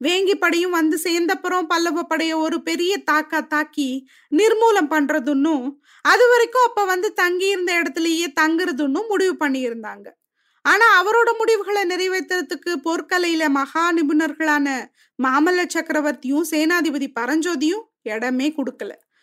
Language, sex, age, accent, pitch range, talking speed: Tamil, female, 20-39, native, 295-375 Hz, 105 wpm